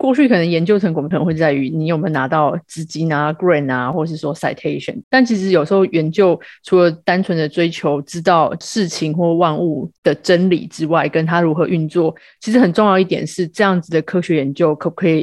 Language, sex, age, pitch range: Chinese, female, 30-49, 160-195 Hz